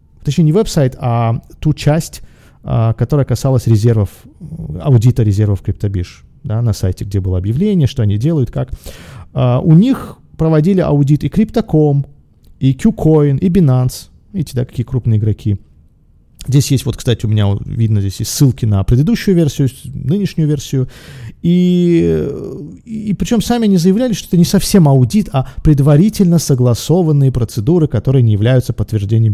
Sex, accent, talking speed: male, native, 145 wpm